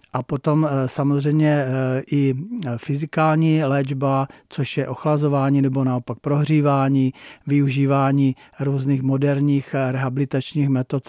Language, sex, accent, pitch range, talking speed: Czech, male, native, 130-140 Hz, 90 wpm